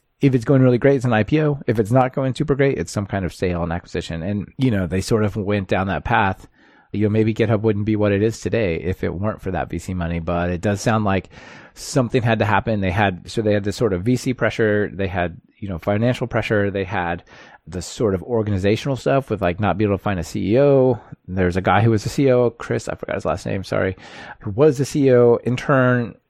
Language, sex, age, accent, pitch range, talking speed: English, male, 30-49, American, 95-120 Hz, 250 wpm